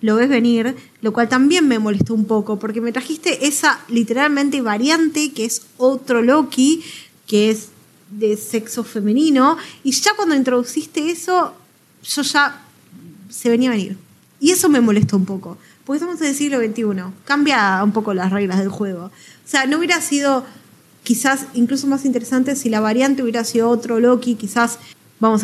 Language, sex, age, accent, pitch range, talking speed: Spanish, female, 10-29, Argentinian, 220-275 Hz, 170 wpm